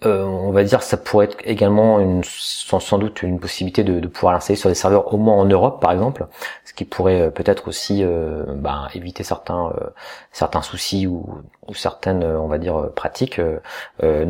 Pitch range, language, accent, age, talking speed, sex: 90-110 Hz, French, French, 30-49, 205 wpm, male